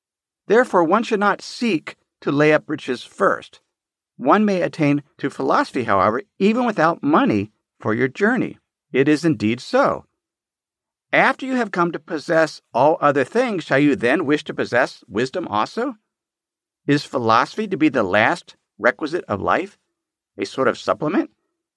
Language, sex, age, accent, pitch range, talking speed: English, male, 50-69, American, 130-215 Hz, 155 wpm